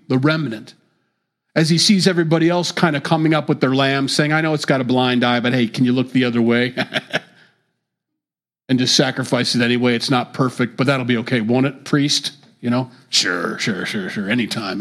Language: English